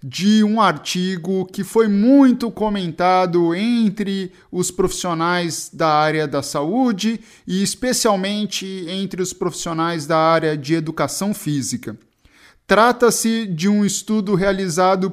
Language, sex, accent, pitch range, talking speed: Portuguese, male, Brazilian, 170-220 Hz, 115 wpm